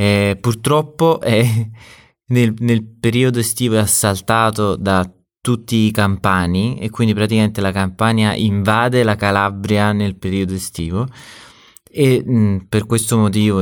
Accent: native